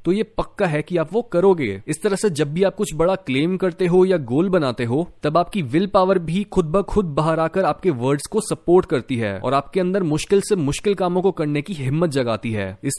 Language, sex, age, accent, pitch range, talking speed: Hindi, male, 20-39, native, 140-195 Hz, 245 wpm